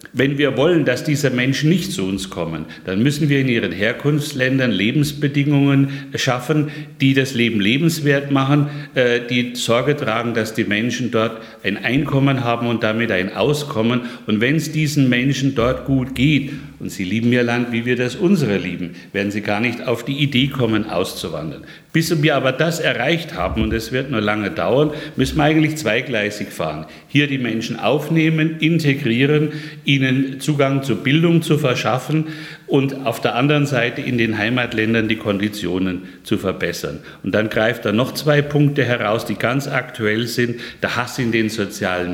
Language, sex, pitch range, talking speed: German, male, 115-150 Hz, 170 wpm